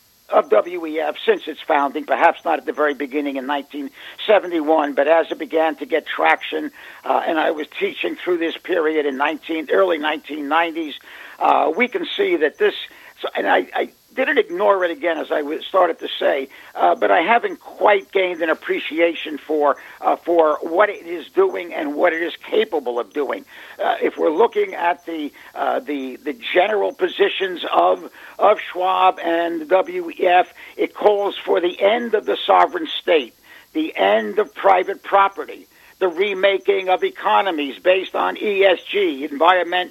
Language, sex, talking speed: English, male, 165 wpm